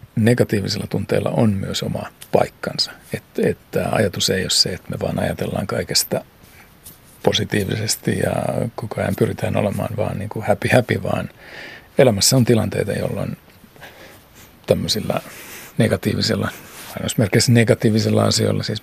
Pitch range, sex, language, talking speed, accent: 100-115 Hz, male, Finnish, 120 wpm, native